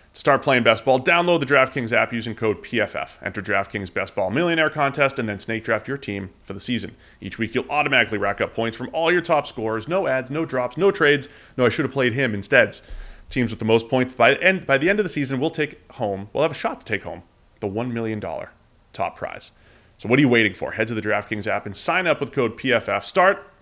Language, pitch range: English, 105-145 Hz